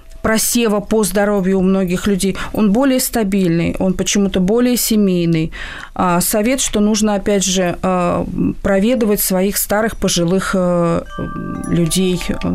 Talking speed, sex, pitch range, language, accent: 110 wpm, female, 175-220 Hz, Russian, native